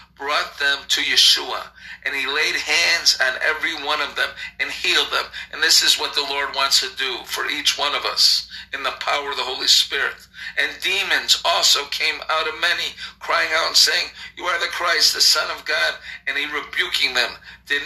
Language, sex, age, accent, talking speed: English, male, 50-69, American, 205 wpm